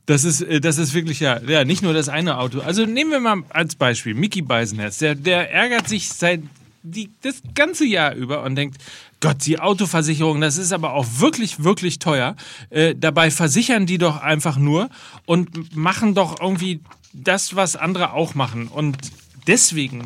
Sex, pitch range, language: male, 145-185 Hz, German